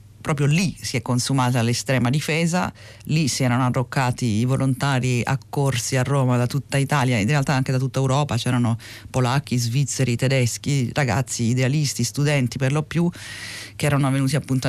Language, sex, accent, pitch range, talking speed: Italian, female, native, 120-145 Hz, 160 wpm